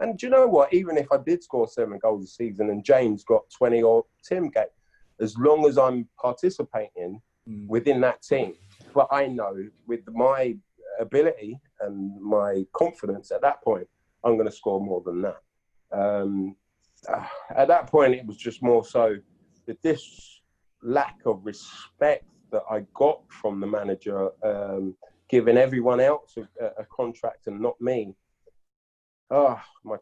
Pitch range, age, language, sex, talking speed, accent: 100-130 Hz, 30-49, English, male, 160 wpm, British